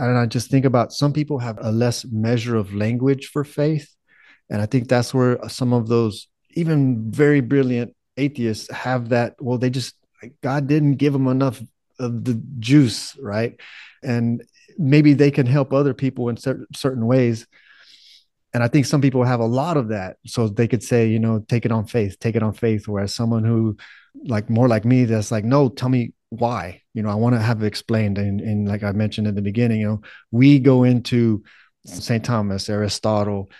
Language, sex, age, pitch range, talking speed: English, male, 30-49, 110-130 Hz, 195 wpm